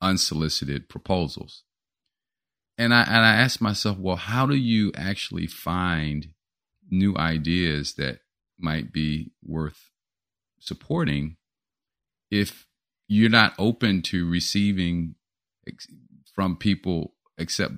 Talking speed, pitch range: 105 wpm, 75-110 Hz